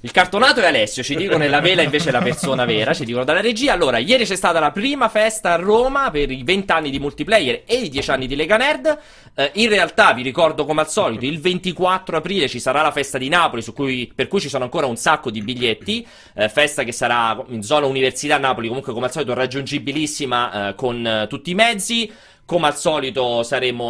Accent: native